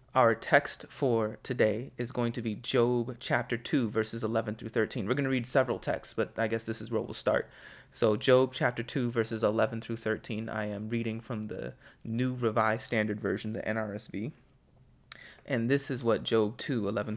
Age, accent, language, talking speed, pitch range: 30-49, American, English, 190 wpm, 110-135 Hz